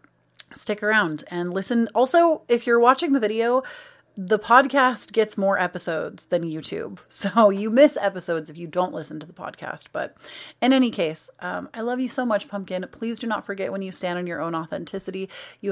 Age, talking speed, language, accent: 30-49, 195 wpm, English, American